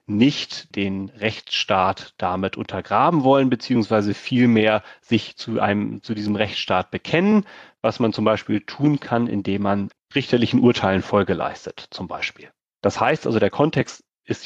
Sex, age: male, 30-49